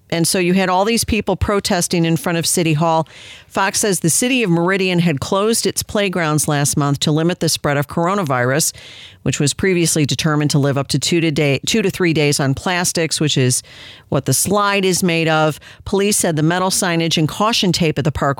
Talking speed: 220 wpm